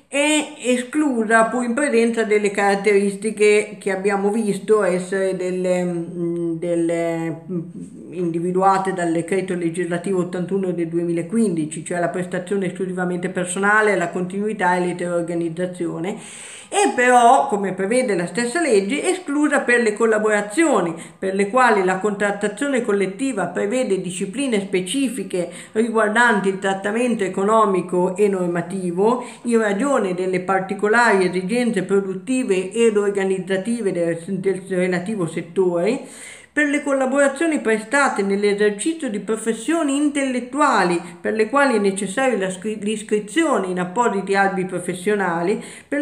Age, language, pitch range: 50-69, Italian, 185-240 Hz